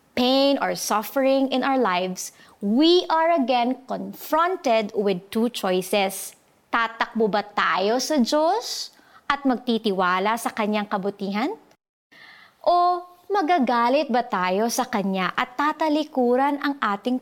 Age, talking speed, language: 30-49, 120 wpm, Filipino